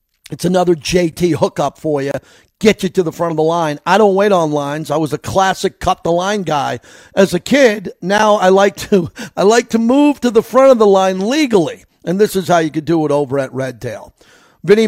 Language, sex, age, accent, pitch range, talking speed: English, male, 50-69, American, 155-195 Hz, 220 wpm